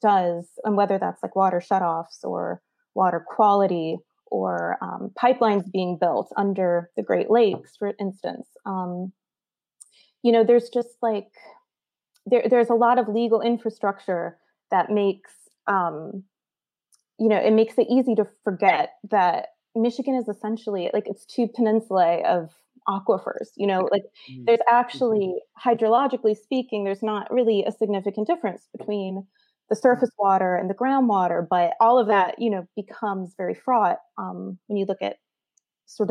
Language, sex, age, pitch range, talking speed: English, female, 20-39, 190-235 Hz, 150 wpm